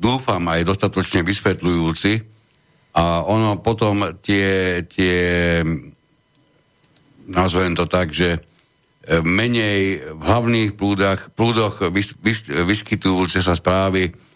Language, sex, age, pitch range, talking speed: Slovak, male, 60-79, 85-105 Hz, 85 wpm